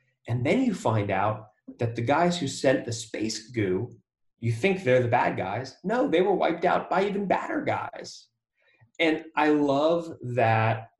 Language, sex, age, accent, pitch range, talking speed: English, male, 30-49, American, 100-120 Hz, 175 wpm